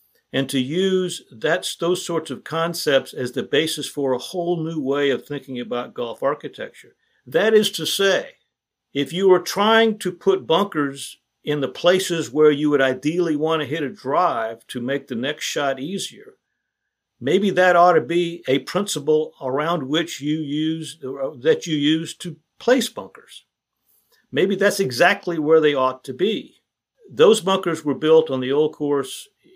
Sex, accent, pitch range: male, American, 130-170 Hz